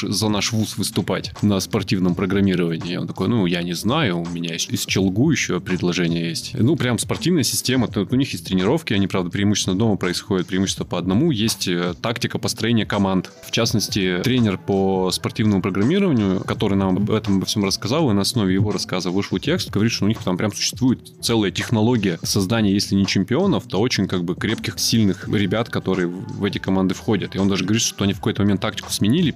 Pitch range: 95-115 Hz